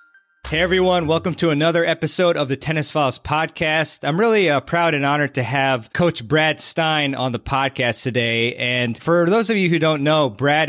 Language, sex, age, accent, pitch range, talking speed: English, male, 30-49, American, 120-155 Hz, 195 wpm